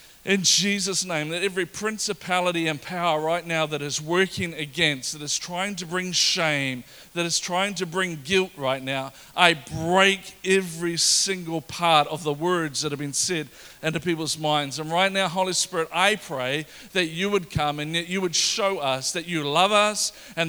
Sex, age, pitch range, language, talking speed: male, 40-59, 155-190 Hz, English, 190 wpm